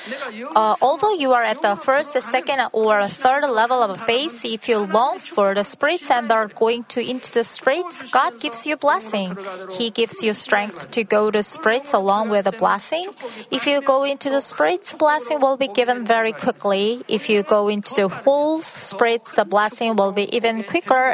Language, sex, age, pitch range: Korean, female, 30-49, 205-260 Hz